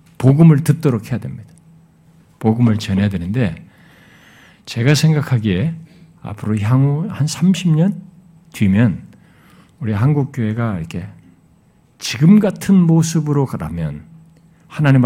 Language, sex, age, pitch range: Korean, male, 50-69, 110-165 Hz